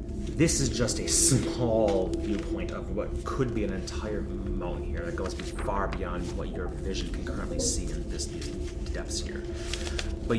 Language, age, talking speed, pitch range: English, 30-49, 175 wpm, 70-90 Hz